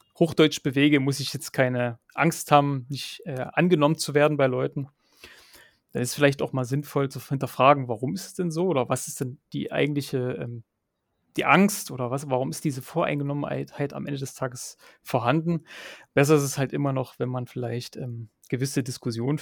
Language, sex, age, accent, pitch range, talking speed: German, male, 30-49, German, 125-155 Hz, 190 wpm